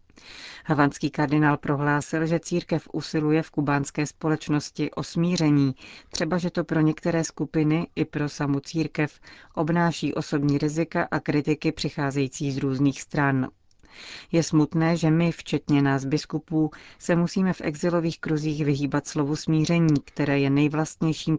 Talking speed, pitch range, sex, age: 130 wpm, 140-160 Hz, female, 40-59